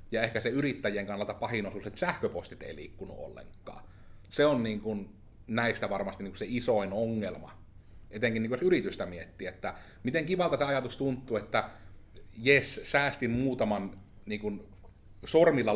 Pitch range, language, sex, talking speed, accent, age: 100-120 Hz, Finnish, male, 155 wpm, native, 30-49